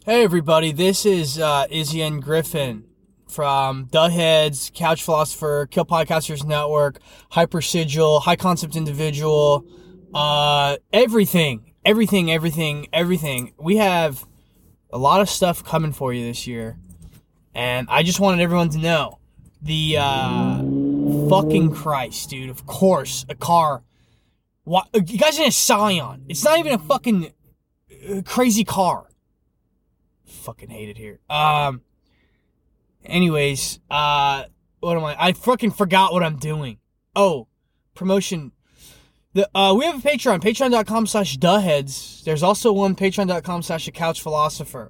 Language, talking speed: English, 130 wpm